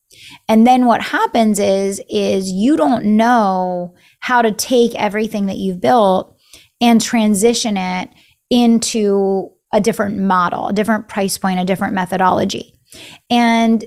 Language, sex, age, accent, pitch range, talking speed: English, female, 30-49, American, 185-230 Hz, 135 wpm